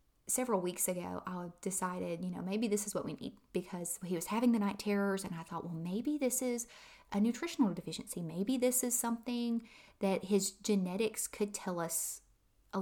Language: English